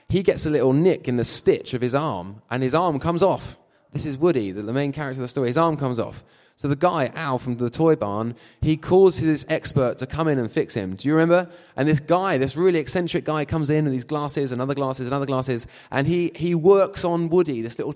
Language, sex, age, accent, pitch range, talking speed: English, male, 20-39, British, 135-175 Hz, 255 wpm